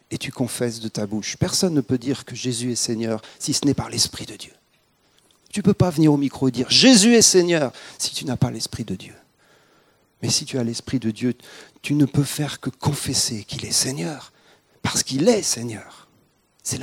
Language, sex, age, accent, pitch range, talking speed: French, male, 40-59, French, 120-155 Hz, 220 wpm